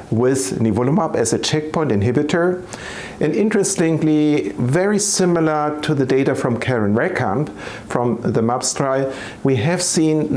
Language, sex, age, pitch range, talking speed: English, male, 50-69, 120-155 Hz, 135 wpm